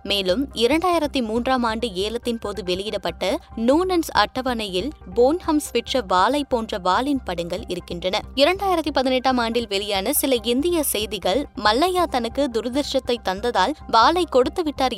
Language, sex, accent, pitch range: Tamil, female, native, 205-275 Hz